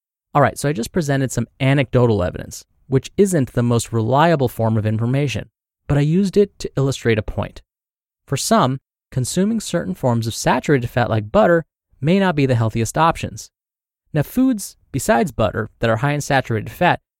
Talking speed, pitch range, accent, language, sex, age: 180 wpm, 115-170 Hz, American, English, male, 20-39